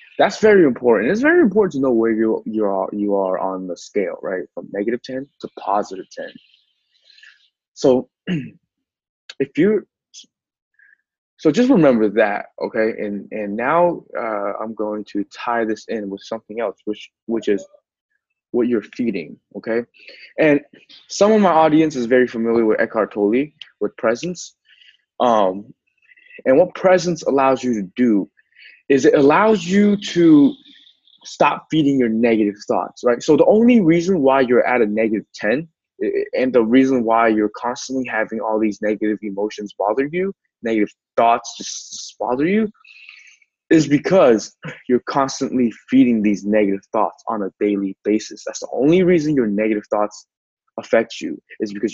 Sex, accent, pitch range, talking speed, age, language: male, American, 105-175 Hz, 155 wpm, 20-39, English